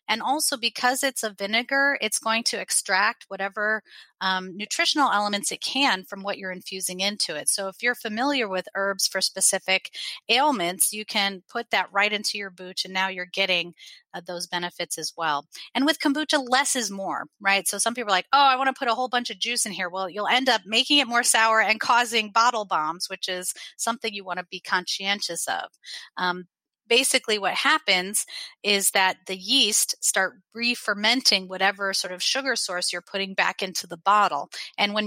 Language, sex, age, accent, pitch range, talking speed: English, female, 30-49, American, 190-235 Hz, 200 wpm